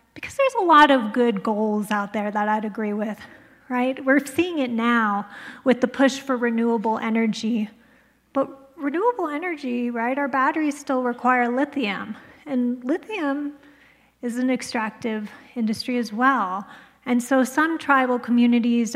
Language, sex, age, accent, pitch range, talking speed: English, female, 30-49, American, 225-265 Hz, 145 wpm